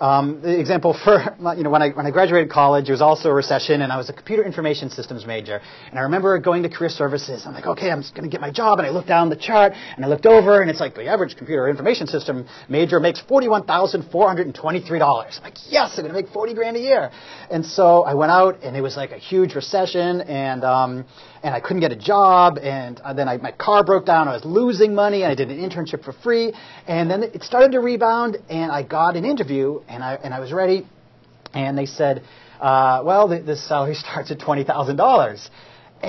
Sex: male